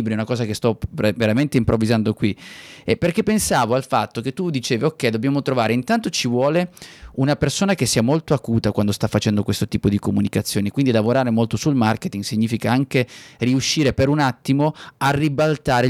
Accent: native